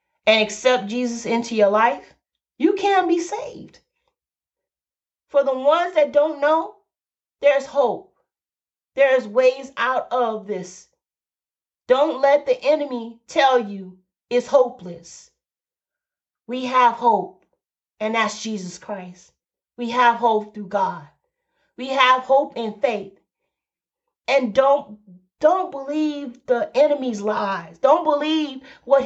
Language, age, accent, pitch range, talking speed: English, 40-59, American, 225-300 Hz, 120 wpm